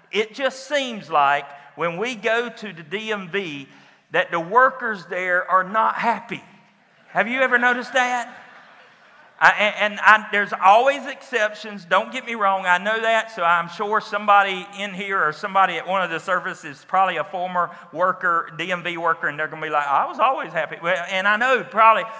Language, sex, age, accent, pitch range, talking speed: English, male, 50-69, American, 165-210 Hz, 190 wpm